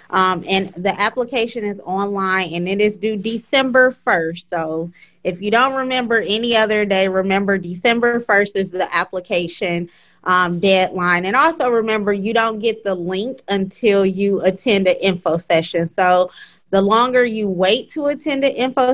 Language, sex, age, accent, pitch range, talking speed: English, female, 20-39, American, 180-220 Hz, 160 wpm